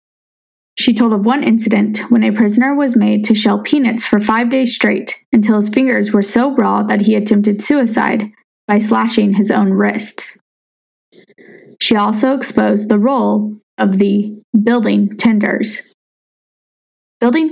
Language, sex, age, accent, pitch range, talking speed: English, female, 10-29, American, 210-240 Hz, 145 wpm